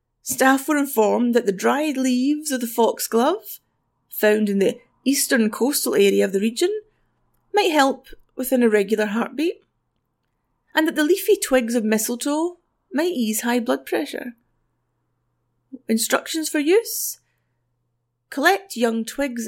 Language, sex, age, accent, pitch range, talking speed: English, female, 30-49, British, 210-275 Hz, 130 wpm